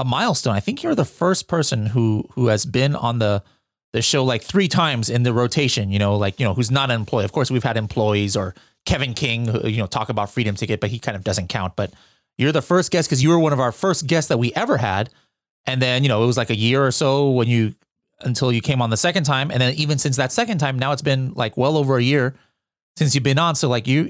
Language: English